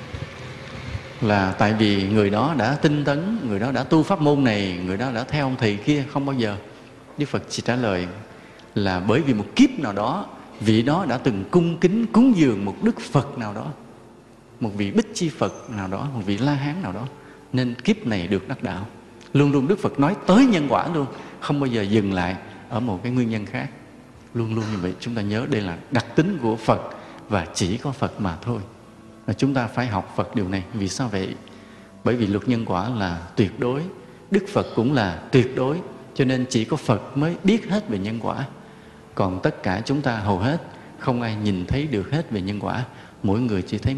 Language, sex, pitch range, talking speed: Vietnamese, male, 100-135 Hz, 225 wpm